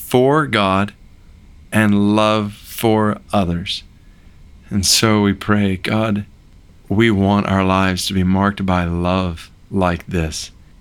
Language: English